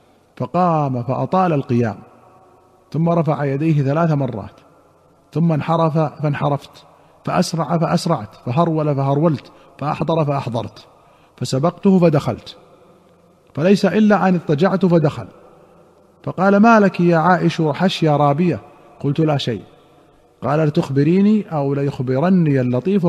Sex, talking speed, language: male, 100 wpm, Arabic